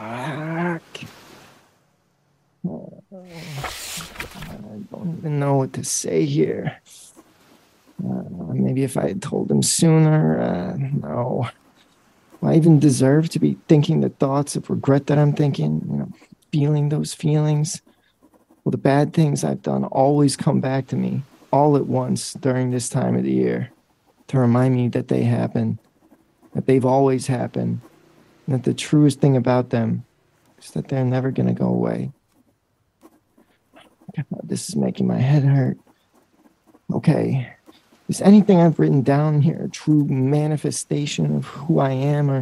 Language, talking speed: English, 145 wpm